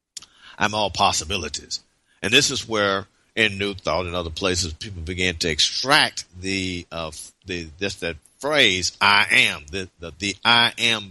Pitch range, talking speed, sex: 90-125 Hz, 160 wpm, male